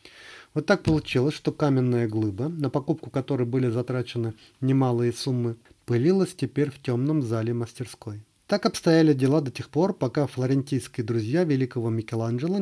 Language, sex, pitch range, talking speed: Russian, male, 120-165 Hz, 145 wpm